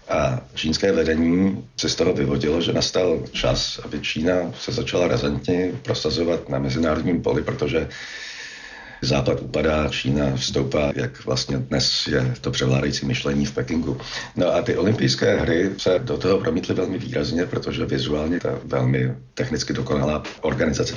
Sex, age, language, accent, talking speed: male, 50-69, Czech, native, 145 wpm